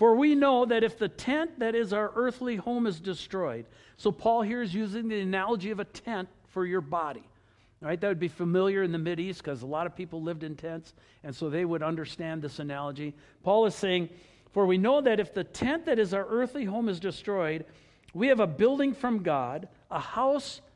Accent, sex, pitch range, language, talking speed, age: American, male, 145-200 Hz, English, 215 wpm, 60-79